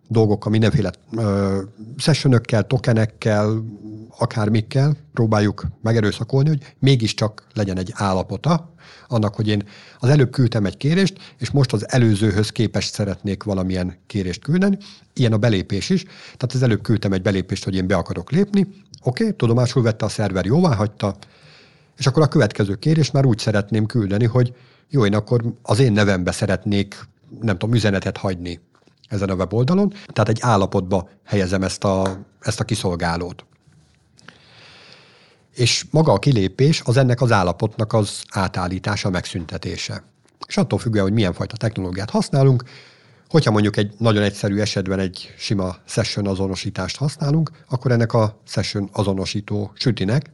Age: 60-79